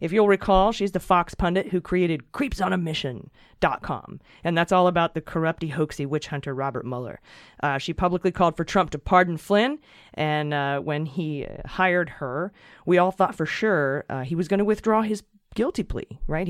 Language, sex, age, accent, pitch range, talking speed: English, female, 30-49, American, 150-195 Hz, 185 wpm